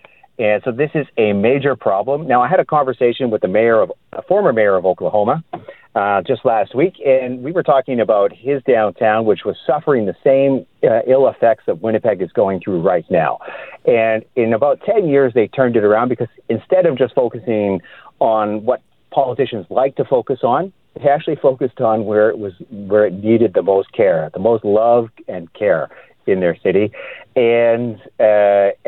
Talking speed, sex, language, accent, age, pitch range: 190 wpm, male, English, American, 50-69, 100-135 Hz